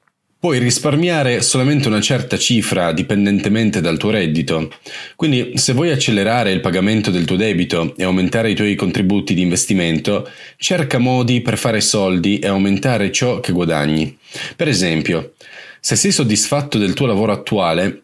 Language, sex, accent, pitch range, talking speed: Italian, male, native, 95-125 Hz, 150 wpm